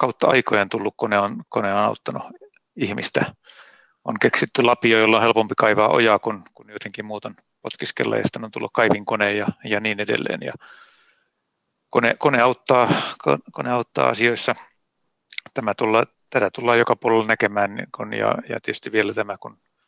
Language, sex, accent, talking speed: Finnish, male, native, 160 wpm